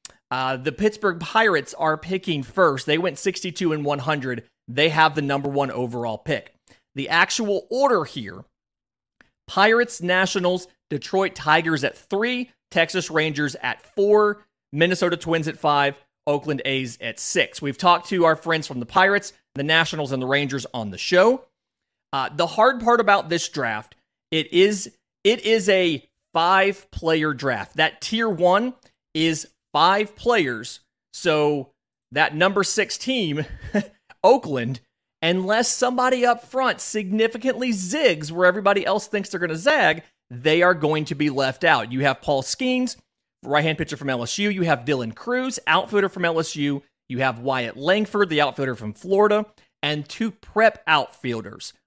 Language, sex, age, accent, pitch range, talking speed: English, male, 30-49, American, 140-200 Hz, 150 wpm